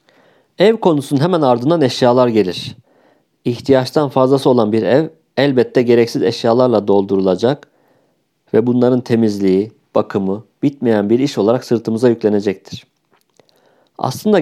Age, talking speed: 50-69, 110 wpm